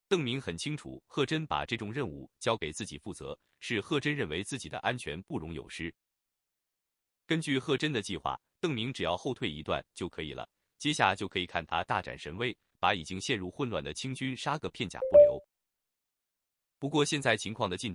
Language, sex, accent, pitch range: Chinese, male, native, 90-145 Hz